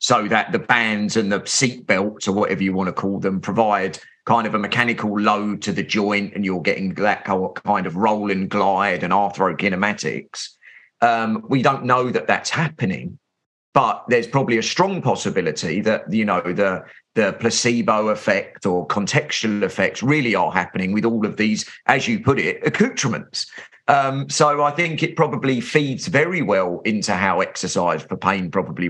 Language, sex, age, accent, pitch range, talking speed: English, male, 40-59, British, 95-120 Hz, 175 wpm